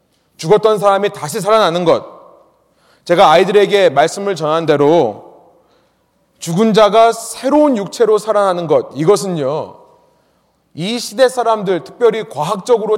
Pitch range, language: 165-225 Hz, Korean